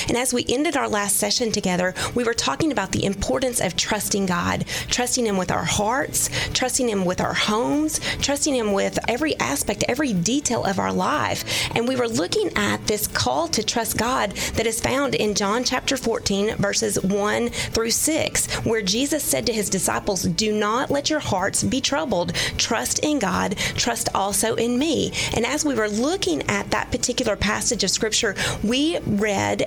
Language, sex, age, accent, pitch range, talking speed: English, female, 30-49, American, 200-250 Hz, 185 wpm